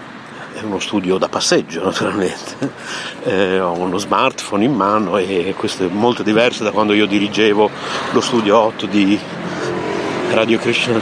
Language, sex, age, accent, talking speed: Italian, male, 50-69, native, 140 wpm